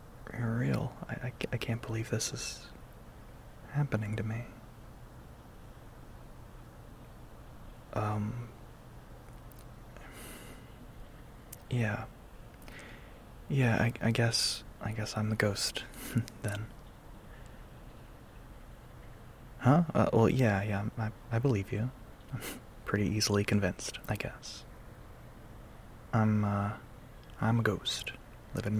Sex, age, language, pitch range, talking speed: male, 20-39, English, 110-120 Hz, 90 wpm